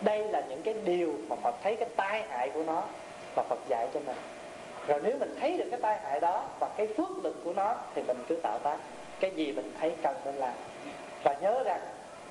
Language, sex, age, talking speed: Vietnamese, male, 20-39, 235 wpm